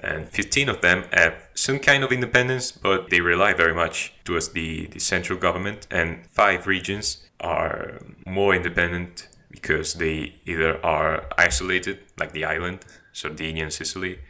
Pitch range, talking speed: 80-95 Hz, 150 wpm